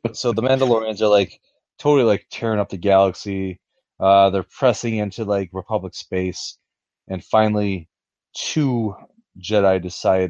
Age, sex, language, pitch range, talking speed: 30-49, male, English, 90-100 Hz, 135 wpm